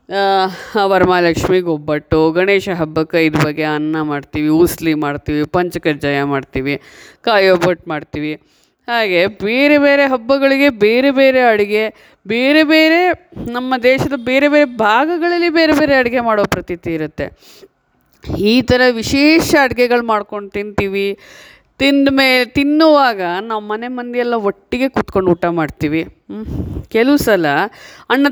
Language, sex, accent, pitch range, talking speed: Kannada, female, native, 175-260 Hz, 120 wpm